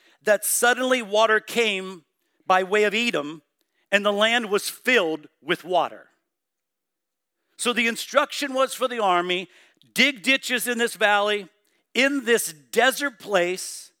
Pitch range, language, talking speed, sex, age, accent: 180-240 Hz, English, 135 wpm, male, 50-69, American